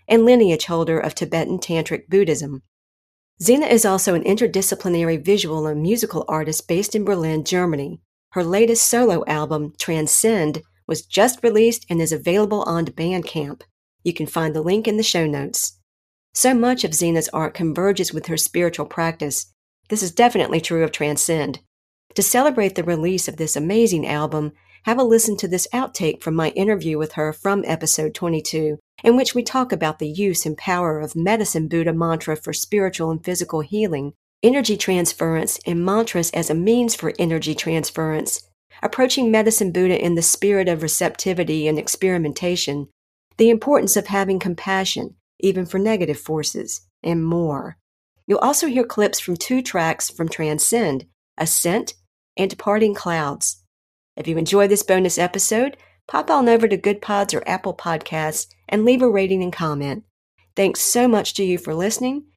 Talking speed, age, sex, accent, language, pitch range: 165 wpm, 50-69, female, American, English, 155-205 Hz